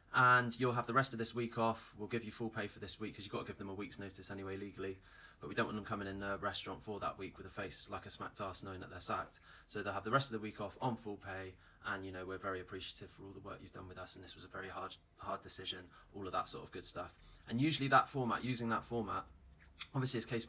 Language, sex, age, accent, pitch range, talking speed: English, male, 20-39, British, 95-115 Hz, 300 wpm